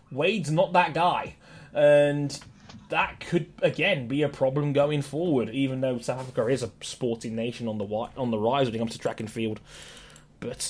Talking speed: 190 wpm